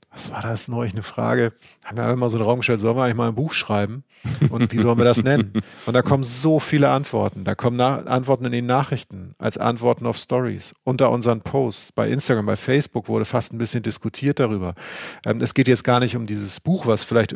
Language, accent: German, German